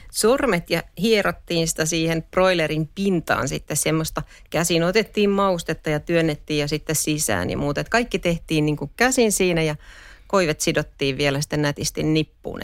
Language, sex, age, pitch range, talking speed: Finnish, female, 40-59, 155-190 Hz, 155 wpm